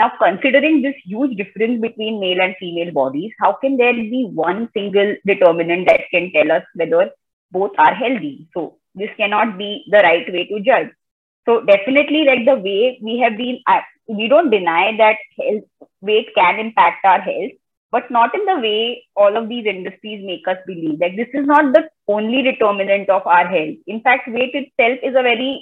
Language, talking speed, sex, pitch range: English, 190 wpm, female, 185-250 Hz